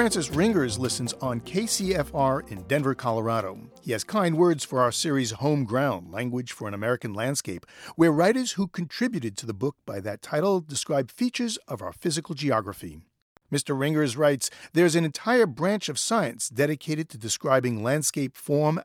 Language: English